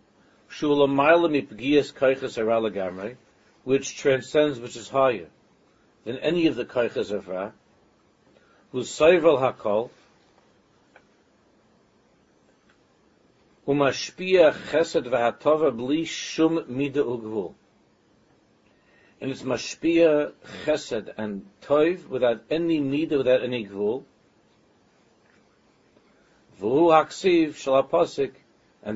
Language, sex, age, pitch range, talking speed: English, male, 60-79, 125-170 Hz, 75 wpm